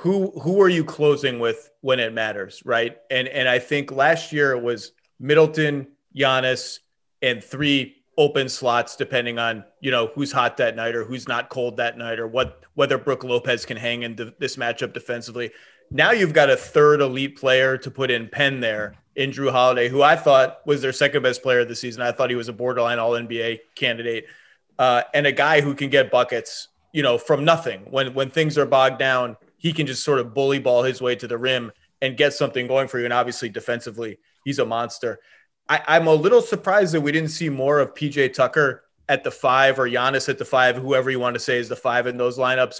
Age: 30-49